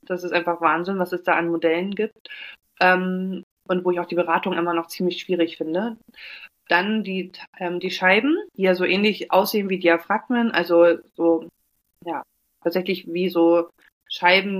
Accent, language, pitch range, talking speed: German, German, 170-200 Hz, 170 wpm